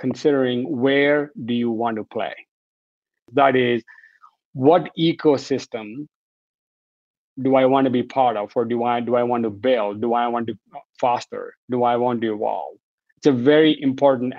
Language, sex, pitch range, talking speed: English, male, 120-145 Hz, 165 wpm